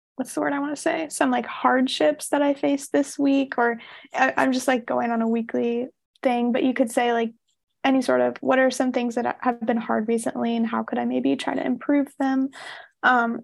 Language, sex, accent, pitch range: English, female, American, 240-275 Hz